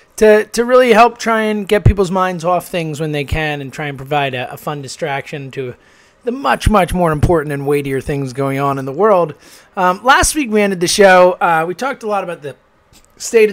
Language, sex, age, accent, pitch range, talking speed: English, male, 20-39, American, 140-195 Hz, 225 wpm